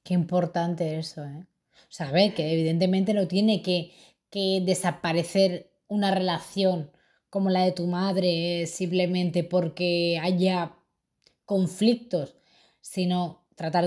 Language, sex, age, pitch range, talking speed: Spanish, female, 20-39, 175-200 Hz, 115 wpm